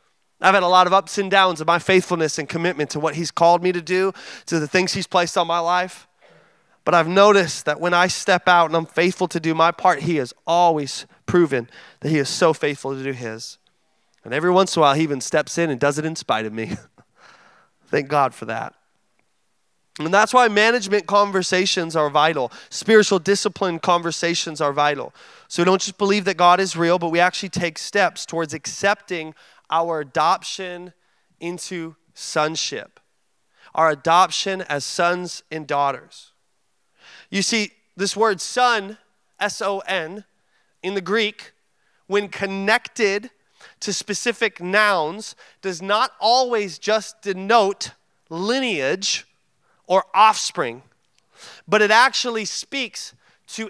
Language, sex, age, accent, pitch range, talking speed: English, male, 20-39, American, 165-200 Hz, 160 wpm